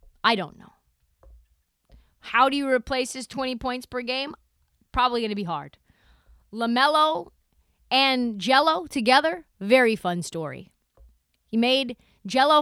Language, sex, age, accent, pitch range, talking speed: English, female, 30-49, American, 180-255 Hz, 130 wpm